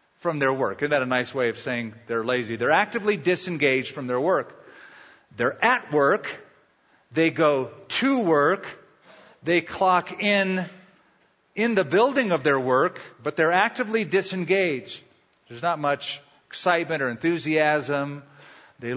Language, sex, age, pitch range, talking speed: English, male, 50-69, 145-195 Hz, 140 wpm